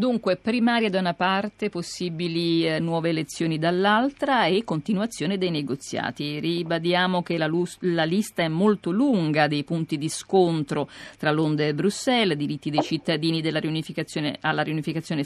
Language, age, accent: Italian, 40-59, native